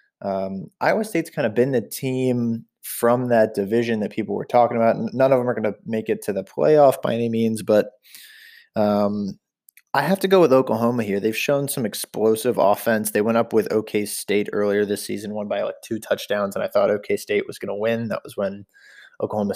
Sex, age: male, 20-39